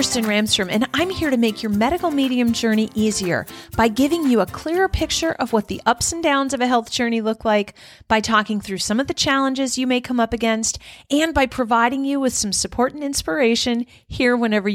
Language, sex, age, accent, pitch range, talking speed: English, female, 40-59, American, 210-260 Hz, 220 wpm